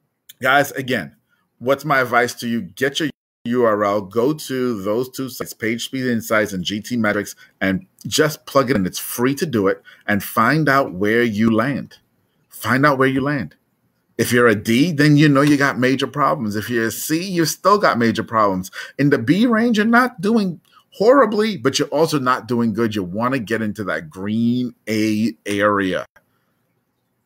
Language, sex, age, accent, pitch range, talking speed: English, male, 30-49, American, 110-145 Hz, 185 wpm